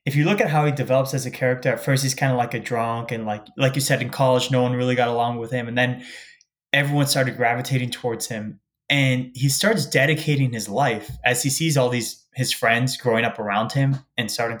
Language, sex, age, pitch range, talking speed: English, male, 20-39, 120-135 Hz, 240 wpm